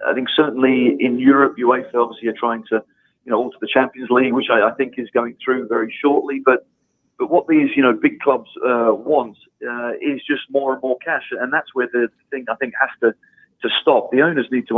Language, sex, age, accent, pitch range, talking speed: English, male, 30-49, British, 120-140 Hz, 230 wpm